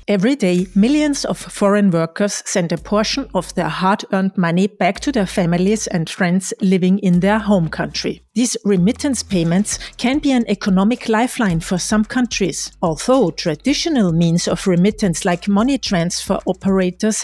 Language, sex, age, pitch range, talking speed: English, female, 40-59, 185-230 Hz, 155 wpm